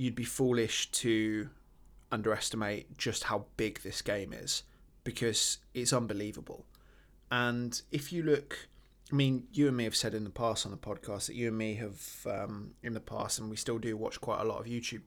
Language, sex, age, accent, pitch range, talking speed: English, male, 20-39, British, 110-135 Hz, 200 wpm